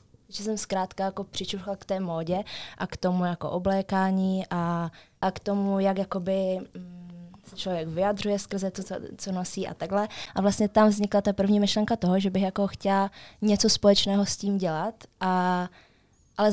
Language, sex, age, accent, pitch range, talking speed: Czech, female, 20-39, native, 175-195 Hz, 170 wpm